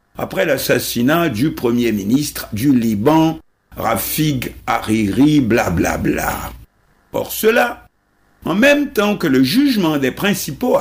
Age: 60-79